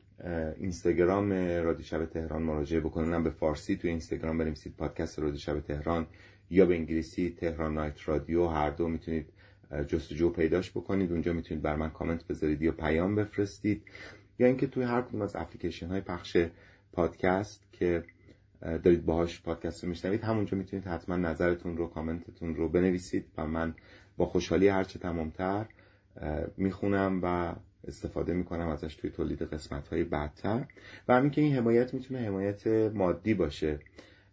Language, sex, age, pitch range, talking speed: Persian, male, 30-49, 80-100 Hz, 145 wpm